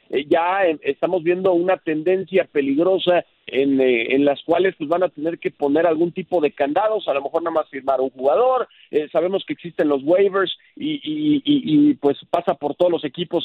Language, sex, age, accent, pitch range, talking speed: Spanish, male, 50-69, Mexican, 155-215 Hz, 205 wpm